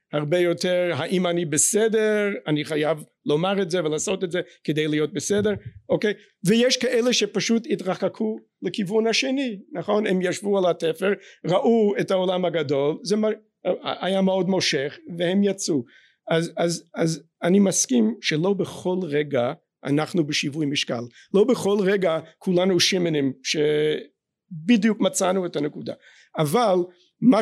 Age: 50-69